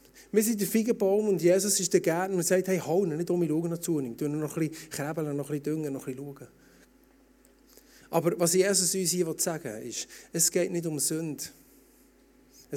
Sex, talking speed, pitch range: male, 220 wpm, 185-280 Hz